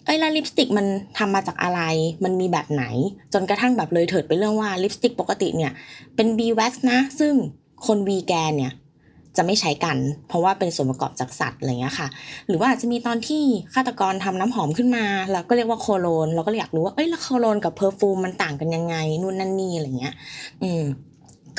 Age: 20-39